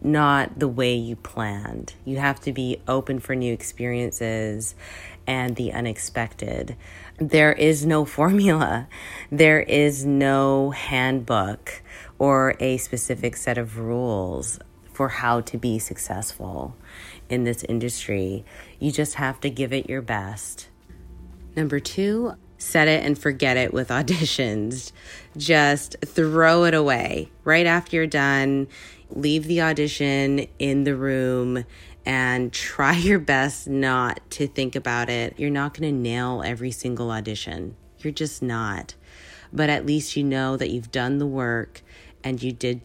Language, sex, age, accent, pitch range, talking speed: English, female, 30-49, American, 115-145 Hz, 145 wpm